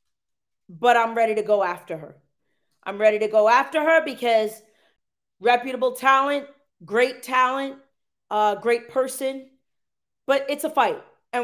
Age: 30-49